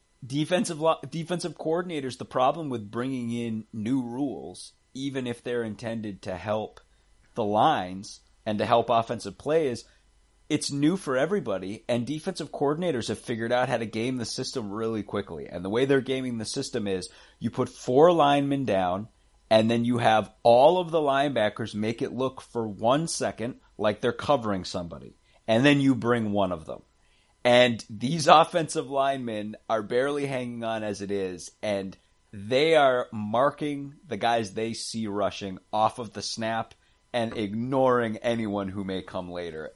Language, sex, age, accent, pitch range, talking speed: English, male, 30-49, American, 100-135 Hz, 170 wpm